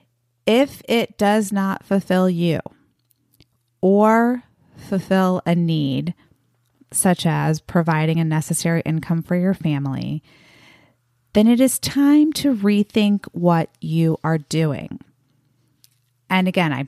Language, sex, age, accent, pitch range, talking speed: English, female, 30-49, American, 160-195 Hz, 115 wpm